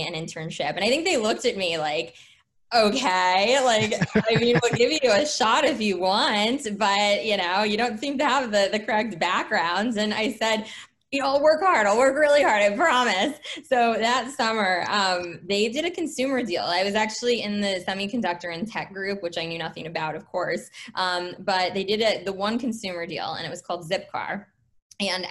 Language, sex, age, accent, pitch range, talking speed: English, female, 20-39, American, 165-210 Hz, 210 wpm